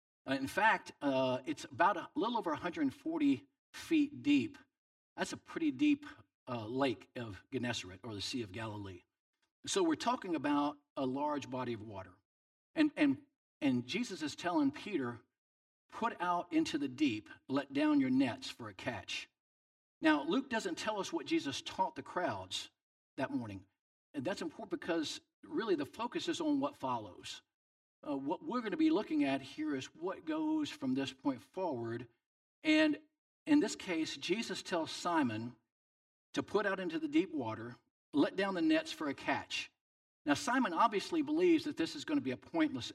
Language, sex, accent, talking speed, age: English, male, American, 175 wpm, 50-69